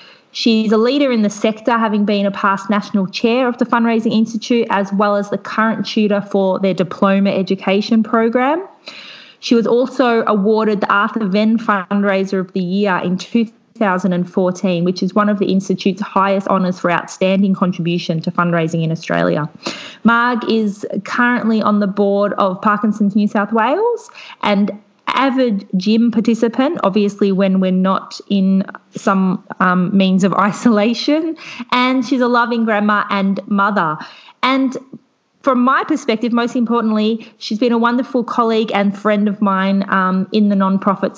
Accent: Australian